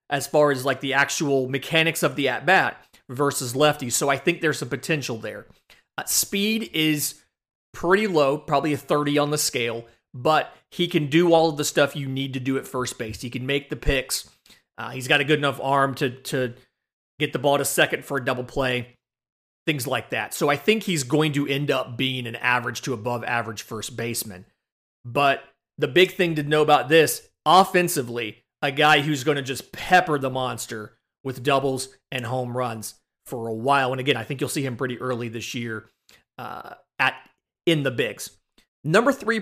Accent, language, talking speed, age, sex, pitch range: American, English, 200 wpm, 30-49, male, 130-160 Hz